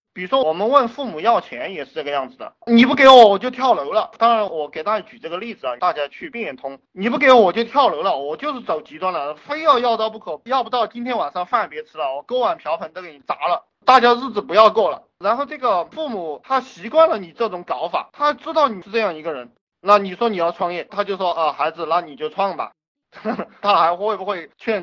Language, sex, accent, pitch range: Chinese, male, native, 150-230 Hz